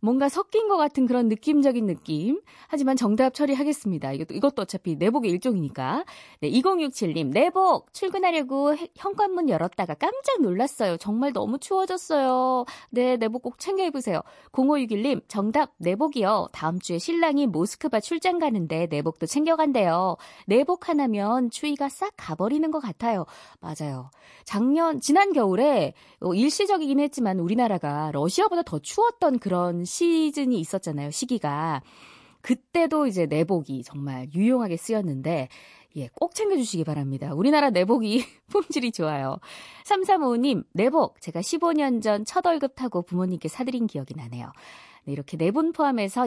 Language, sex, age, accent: Korean, female, 20-39, native